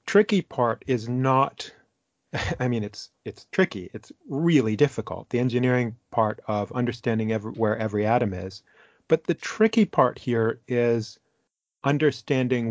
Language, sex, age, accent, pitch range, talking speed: English, male, 40-59, American, 110-130 Hz, 135 wpm